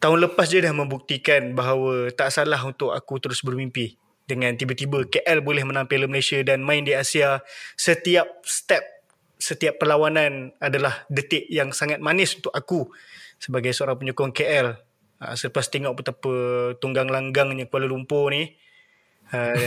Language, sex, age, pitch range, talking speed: Malay, male, 20-39, 130-155 Hz, 145 wpm